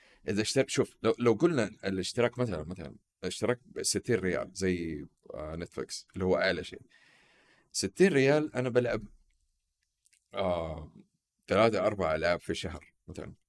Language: Arabic